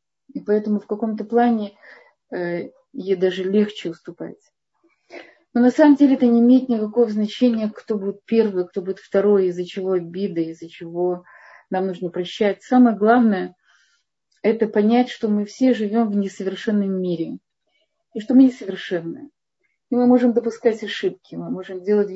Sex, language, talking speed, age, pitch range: female, Russian, 150 wpm, 30-49, 190-240 Hz